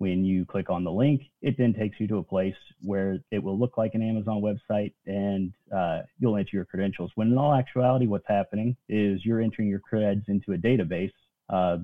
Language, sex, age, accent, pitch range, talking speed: English, male, 30-49, American, 95-110 Hz, 215 wpm